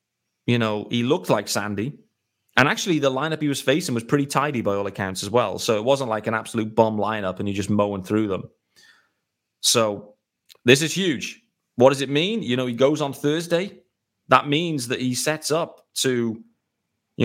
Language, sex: English, male